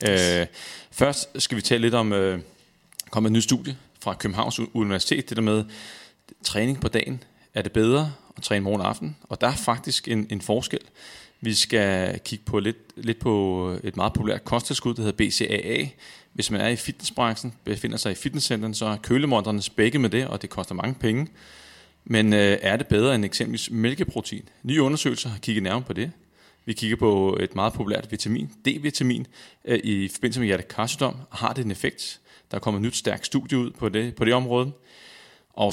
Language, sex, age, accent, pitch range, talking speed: Danish, male, 30-49, native, 105-125 Hz, 190 wpm